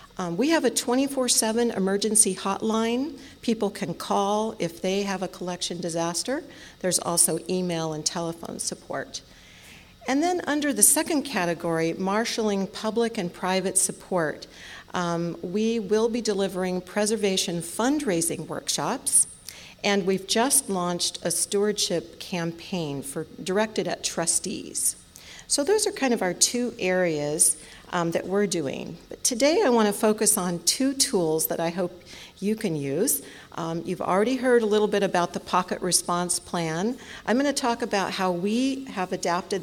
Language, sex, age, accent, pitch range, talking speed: English, female, 50-69, American, 175-220 Hz, 150 wpm